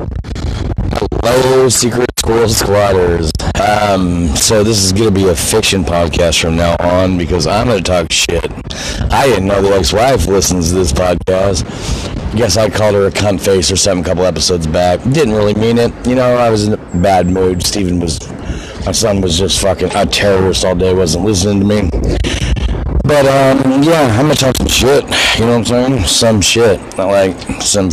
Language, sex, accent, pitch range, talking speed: English, male, American, 90-115 Hz, 200 wpm